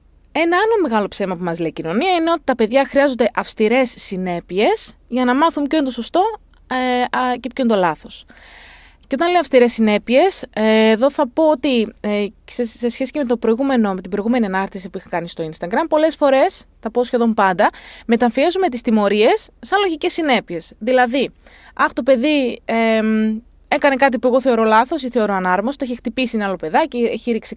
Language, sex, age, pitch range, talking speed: Greek, female, 20-39, 195-285 Hz, 200 wpm